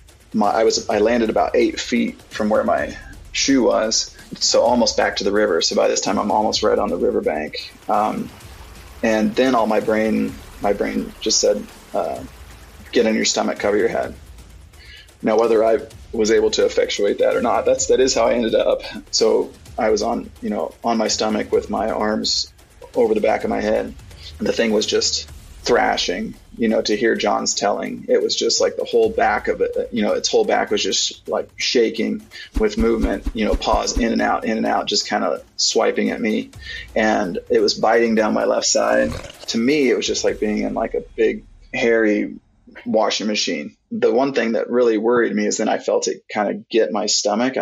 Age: 20-39